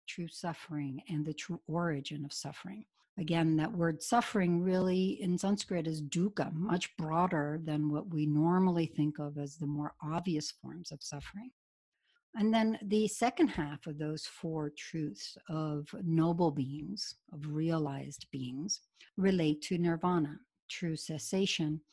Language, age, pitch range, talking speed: English, 60-79, 150-190 Hz, 140 wpm